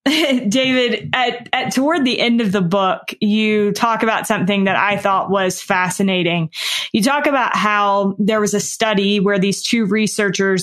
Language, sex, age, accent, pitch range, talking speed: English, female, 20-39, American, 185-215 Hz, 170 wpm